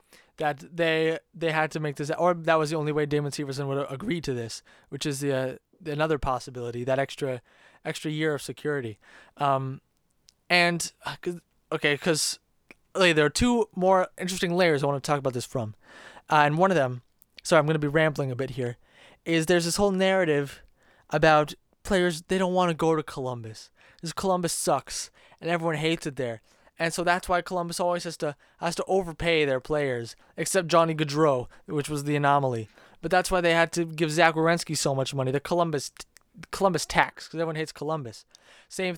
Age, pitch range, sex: 20-39, 140-170 Hz, male